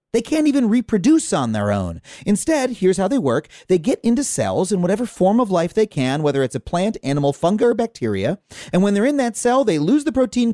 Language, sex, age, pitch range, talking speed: English, male, 30-49, 145-245 Hz, 235 wpm